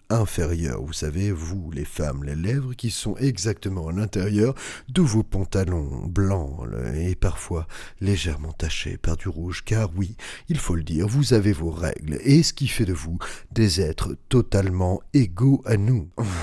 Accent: French